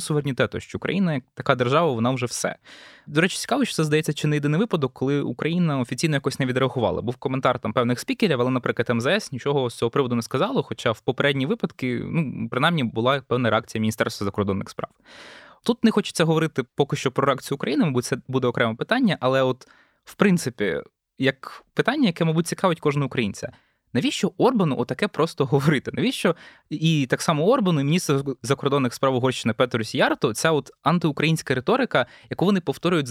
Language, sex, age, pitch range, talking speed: Ukrainian, male, 20-39, 125-165 Hz, 180 wpm